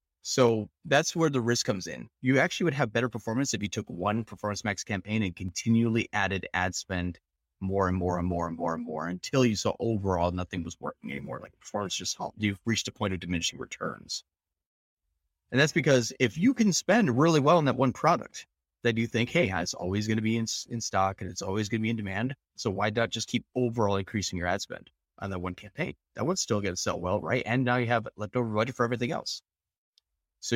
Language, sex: English, male